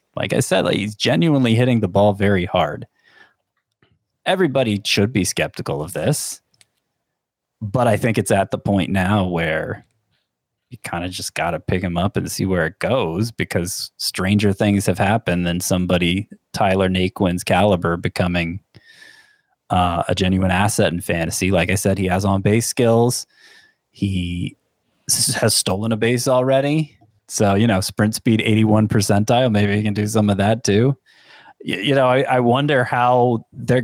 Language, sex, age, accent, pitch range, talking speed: English, male, 20-39, American, 95-115 Hz, 165 wpm